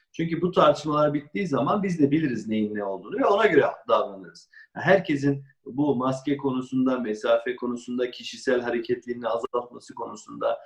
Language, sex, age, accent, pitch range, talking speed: Turkish, male, 50-69, native, 125-170 Hz, 140 wpm